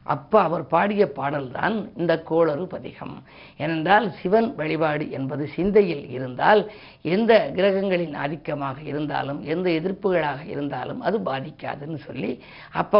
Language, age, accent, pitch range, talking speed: Tamil, 50-69, native, 155-195 Hz, 110 wpm